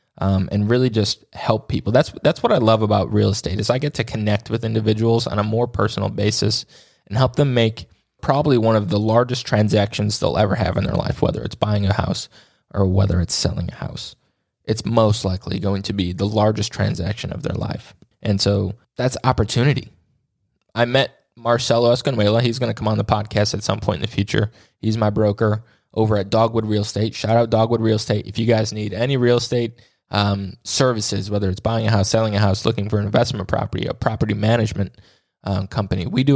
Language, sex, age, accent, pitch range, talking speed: English, male, 20-39, American, 100-115 Hz, 210 wpm